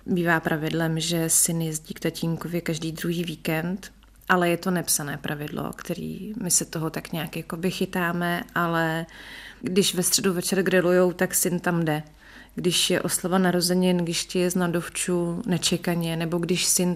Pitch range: 165-180 Hz